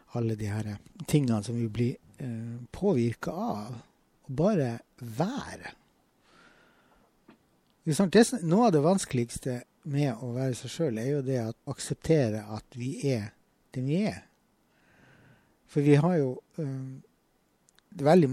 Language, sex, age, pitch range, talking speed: English, male, 60-79, 120-145 Hz, 135 wpm